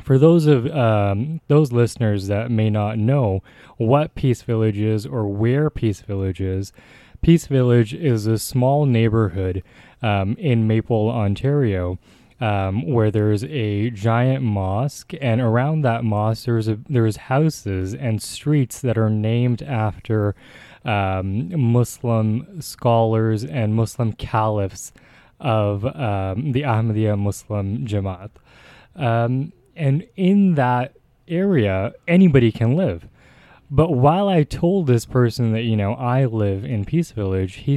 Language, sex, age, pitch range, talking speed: English, male, 20-39, 110-135 Hz, 130 wpm